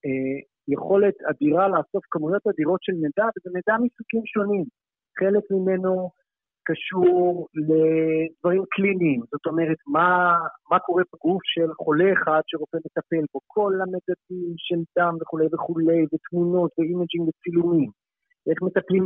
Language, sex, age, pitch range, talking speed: Hebrew, male, 50-69, 165-195 Hz, 125 wpm